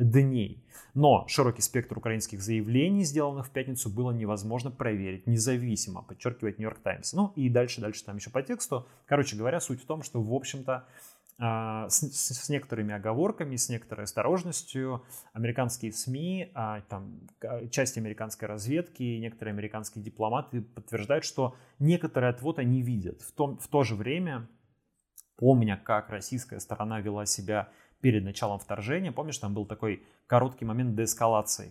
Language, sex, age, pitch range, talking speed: Russian, male, 20-39, 105-130 Hz, 145 wpm